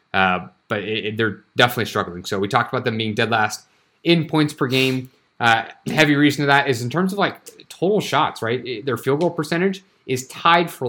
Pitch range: 110-140 Hz